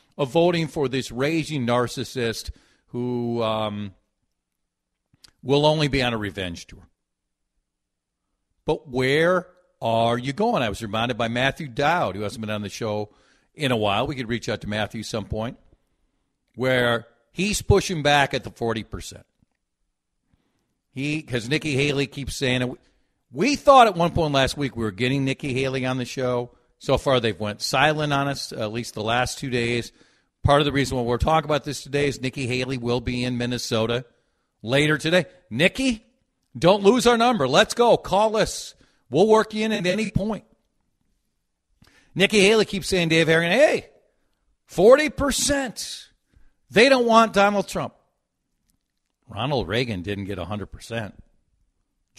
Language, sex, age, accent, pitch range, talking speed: English, male, 50-69, American, 115-155 Hz, 160 wpm